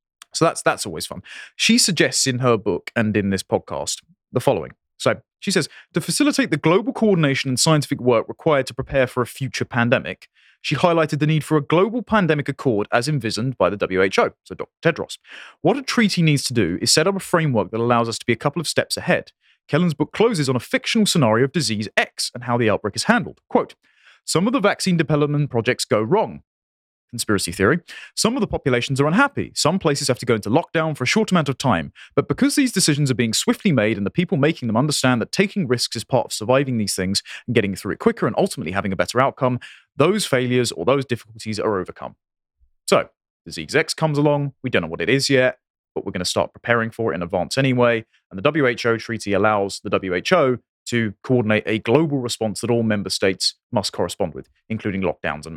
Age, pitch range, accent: 30-49, 110-160 Hz, British